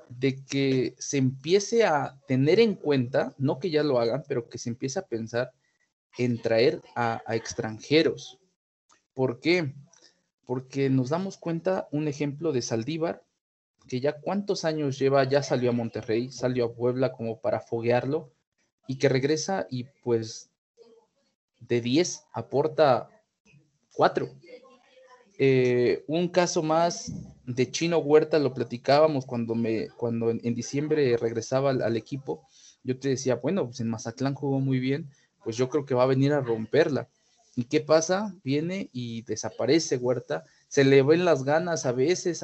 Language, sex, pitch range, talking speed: Spanish, male, 120-155 Hz, 155 wpm